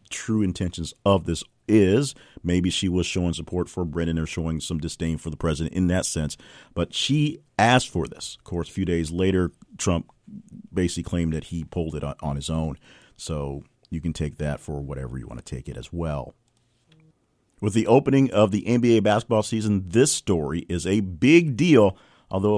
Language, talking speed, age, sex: English, 190 wpm, 40-59, male